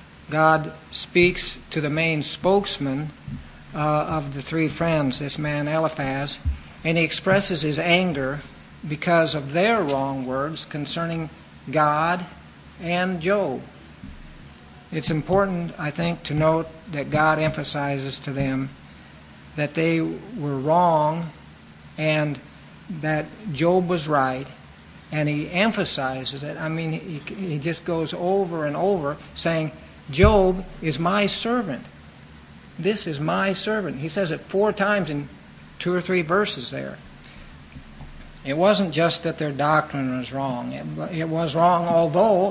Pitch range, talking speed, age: 140-180 Hz, 135 wpm, 60-79